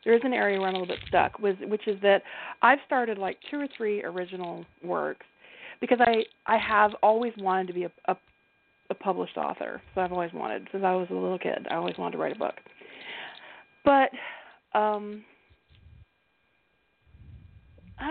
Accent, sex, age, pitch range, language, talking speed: American, female, 40-59, 185-245 Hz, English, 180 wpm